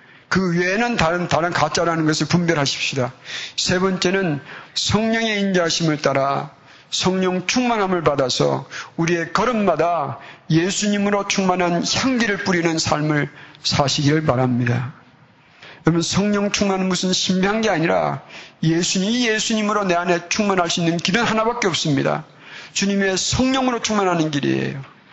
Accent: native